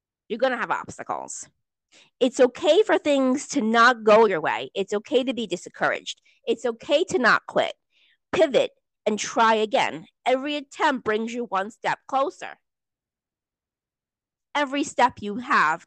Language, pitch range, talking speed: English, 210-280 Hz, 150 wpm